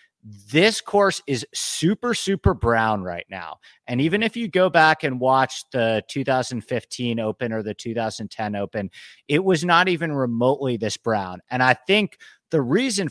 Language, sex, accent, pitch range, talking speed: English, male, American, 120-180 Hz, 160 wpm